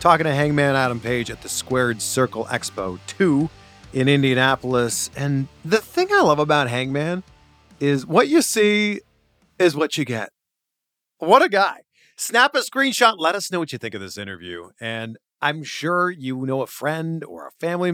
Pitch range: 120-175 Hz